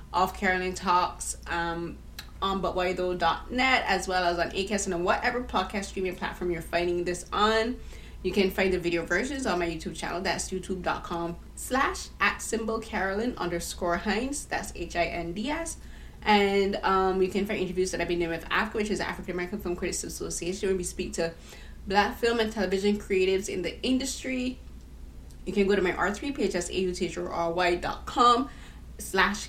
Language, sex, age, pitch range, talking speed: English, female, 20-39, 175-215 Hz, 165 wpm